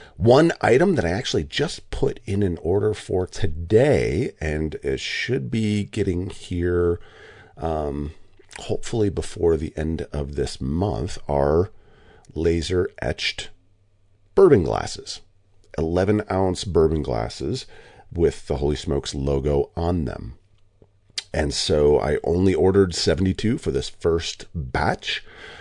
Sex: male